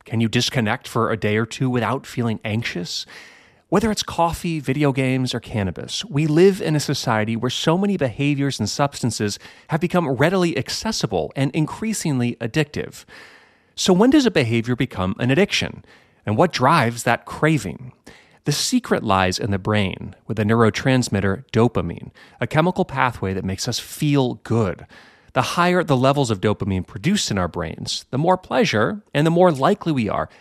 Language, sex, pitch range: English, male, 110-160 Hz